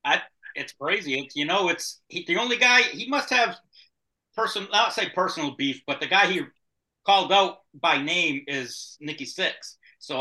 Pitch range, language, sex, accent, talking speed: 140-185 Hz, English, male, American, 180 wpm